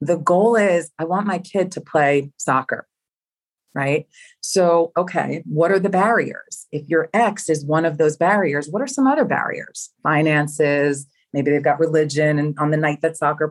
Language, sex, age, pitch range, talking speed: English, female, 30-49, 155-210 Hz, 180 wpm